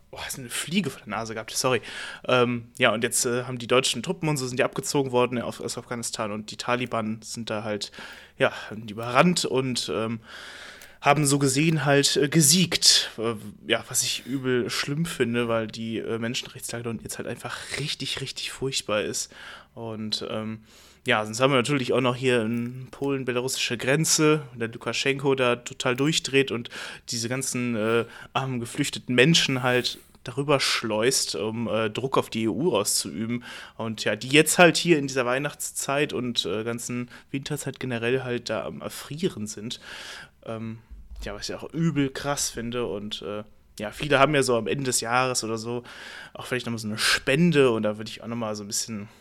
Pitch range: 115-140 Hz